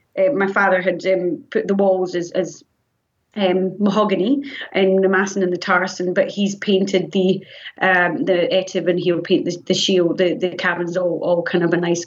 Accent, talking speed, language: British, 220 wpm, English